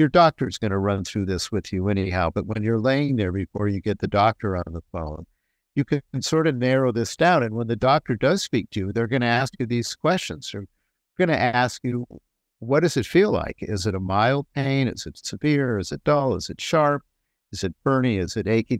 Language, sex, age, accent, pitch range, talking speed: English, male, 50-69, American, 95-125 Hz, 245 wpm